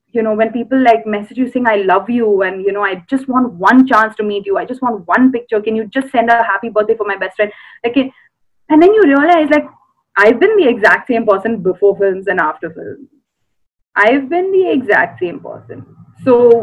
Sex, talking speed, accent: female, 225 wpm, Indian